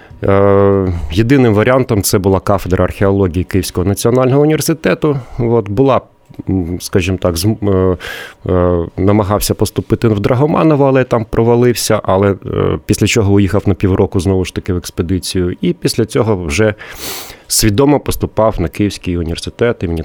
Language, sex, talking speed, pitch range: Ukrainian, male, 125 wpm, 90-115 Hz